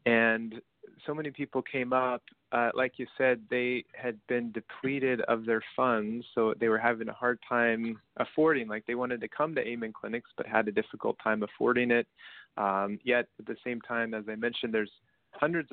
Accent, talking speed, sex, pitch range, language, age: American, 195 wpm, male, 110-130 Hz, English, 30-49